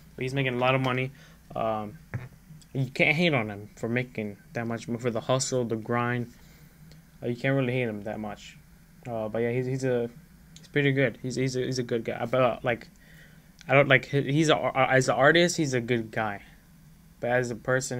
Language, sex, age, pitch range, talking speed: English, male, 10-29, 120-160 Hz, 215 wpm